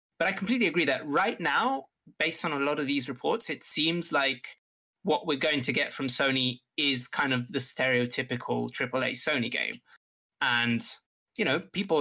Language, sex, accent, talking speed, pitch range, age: English, male, British, 180 wpm, 125-150 Hz, 20-39